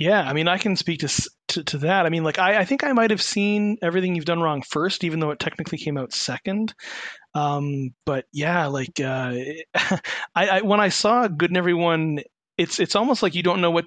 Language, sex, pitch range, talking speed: English, male, 145-180 Hz, 230 wpm